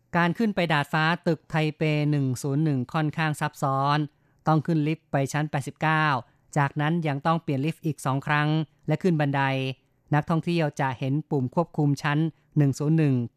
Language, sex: Thai, female